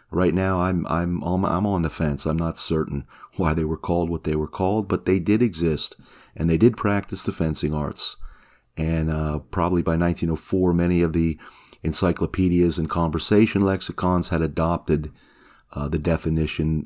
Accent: American